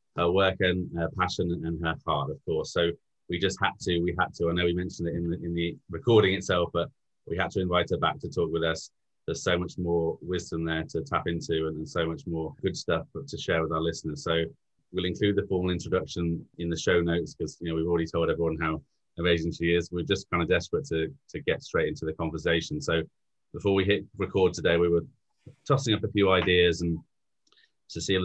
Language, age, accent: English, 30-49, British